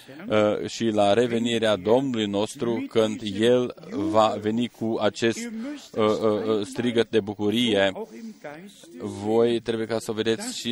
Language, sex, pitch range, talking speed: Romanian, male, 115-150 Hz, 135 wpm